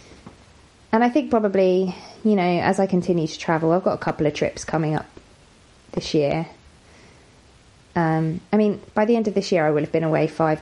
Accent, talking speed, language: British, 205 wpm, English